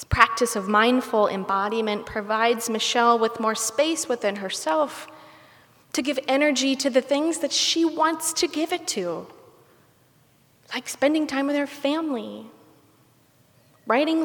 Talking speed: 135 wpm